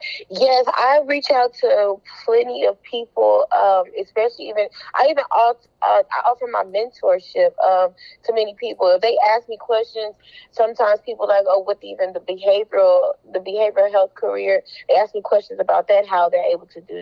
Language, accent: English, American